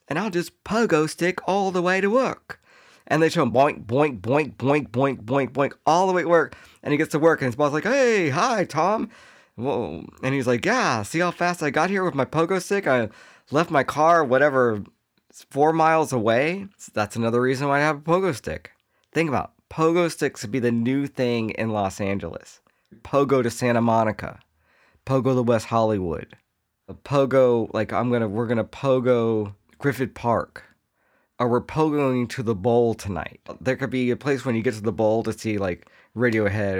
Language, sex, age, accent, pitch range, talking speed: English, male, 40-59, American, 105-140 Hz, 205 wpm